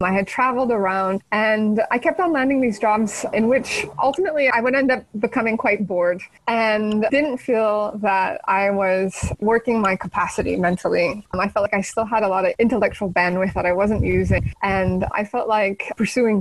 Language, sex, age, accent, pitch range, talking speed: English, female, 20-39, American, 195-240 Hz, 185 wpm